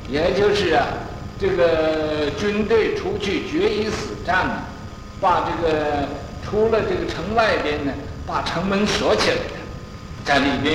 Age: 60-79